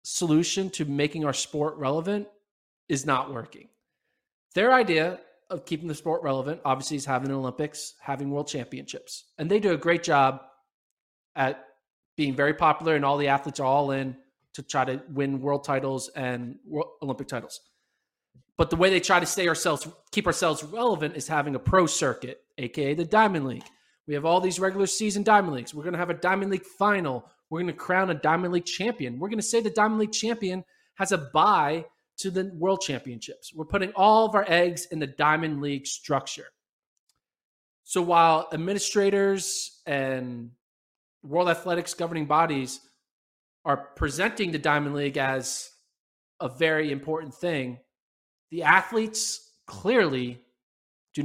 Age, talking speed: 20-39, 165 wpm